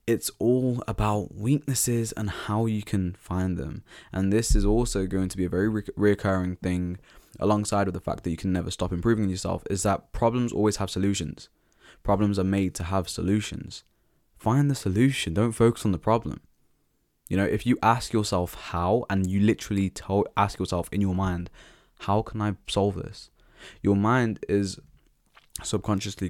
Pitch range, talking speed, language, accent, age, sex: 90-110 Hz, 180 wpm, English, British, 10-29, male